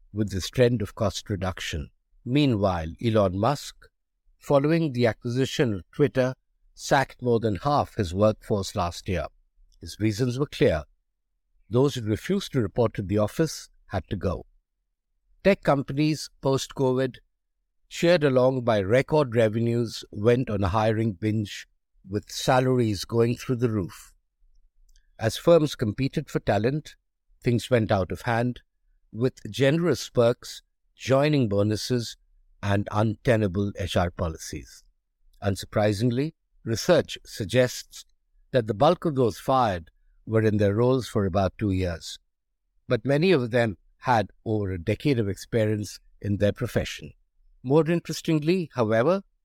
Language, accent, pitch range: English, Indian, 100-130 Hz